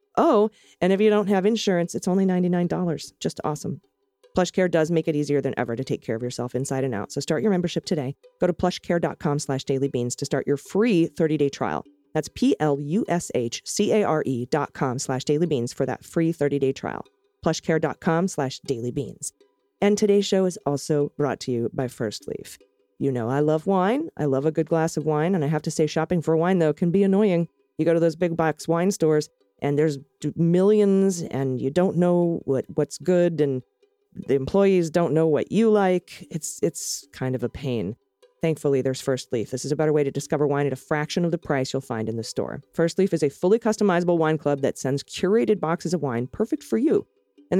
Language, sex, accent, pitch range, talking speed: English, female, American, 140-185 Hz, 210 wpm